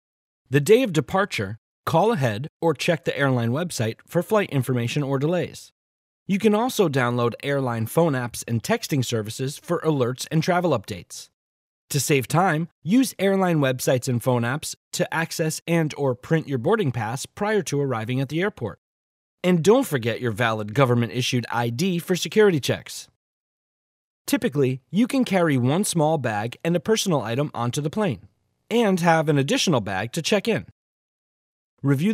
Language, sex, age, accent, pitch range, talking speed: English, male, 30-49, American, 120-175 Hz, 160 wpm